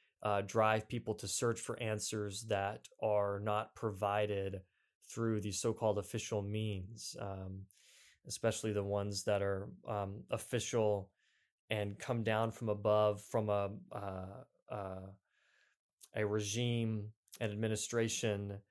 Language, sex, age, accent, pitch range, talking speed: English, male, 20-39, American, 105-120 Hz, 120 wpm